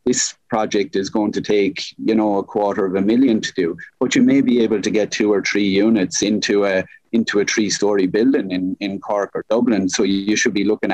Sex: male